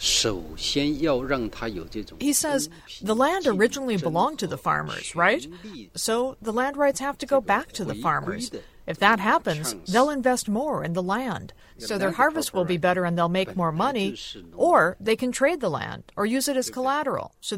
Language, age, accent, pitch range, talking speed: English, 50-69, American, 180-255 Hz, 180 wpm